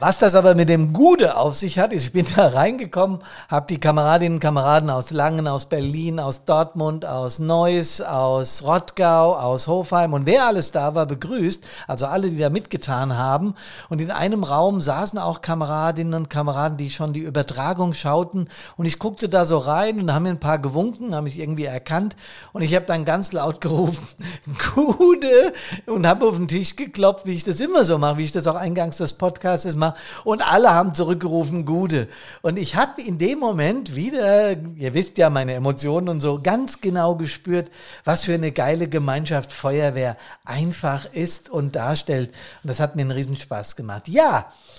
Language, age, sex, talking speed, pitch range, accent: German, 50-69, male, 190 wpm, 150-190 Hz, German